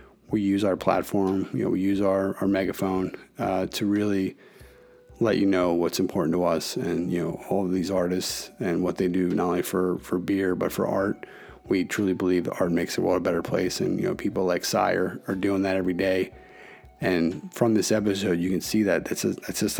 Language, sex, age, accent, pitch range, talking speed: English, male, 30-49, American, 90-100 Hz, 225 wpm